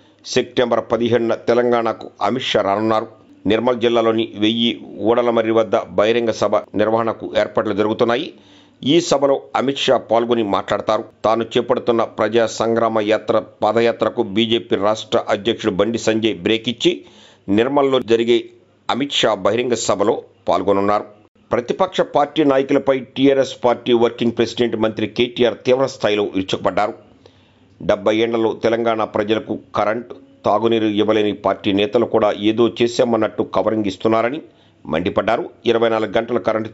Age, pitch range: 50-69, 105-120 Hz